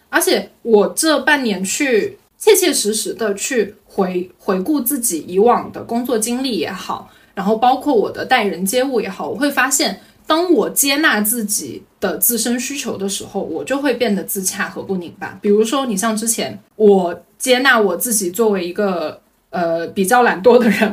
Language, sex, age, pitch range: Chinese, female, 20-39, 205-270 Hz